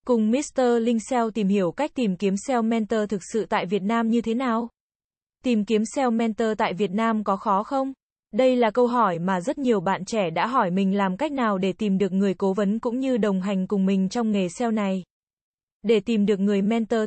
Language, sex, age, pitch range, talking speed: Vietnamese, female, 20-39, 200-245 Hz, 230 wpm